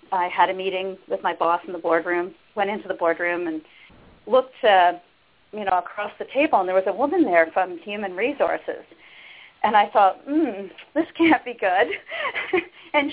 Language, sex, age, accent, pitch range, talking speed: English, female, 40-59, American, 175-225 Hz, 185 wpm